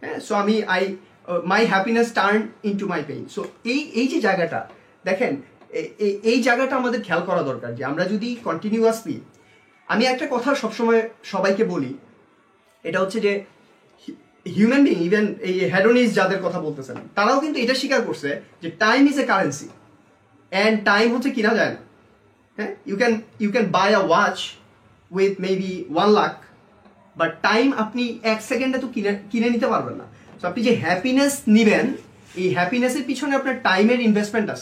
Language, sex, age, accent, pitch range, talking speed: Bengali, male, 30-49, native, 190-255 Hz, 120 wpm